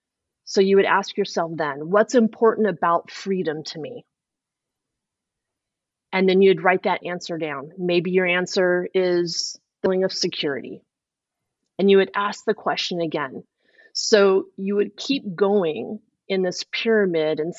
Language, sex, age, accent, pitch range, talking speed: English, female, 30-49, American, 180-225 Hz, 145 wpm